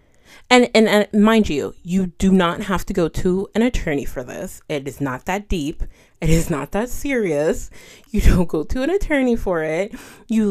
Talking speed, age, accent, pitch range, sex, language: 200 wpm, 30-49, American, 155-200 Hz, female, English